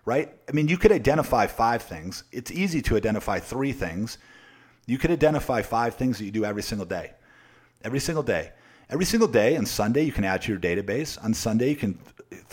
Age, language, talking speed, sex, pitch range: 40-59, English, 210 wpm, male, 100-125 Hz